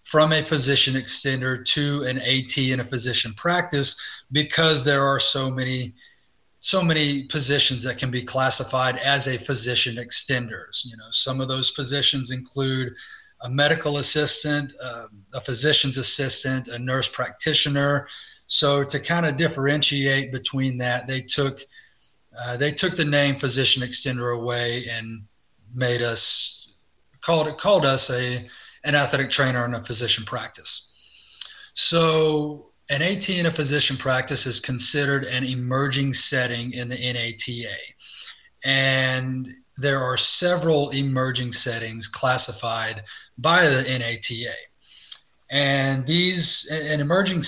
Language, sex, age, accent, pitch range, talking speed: English, male, 30-49, American, 125-145 Hz, 135 wpm